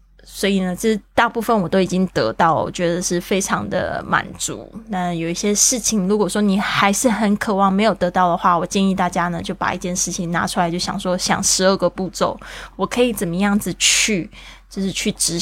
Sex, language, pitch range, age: female, Chinese, 180-210 Hz, 20-39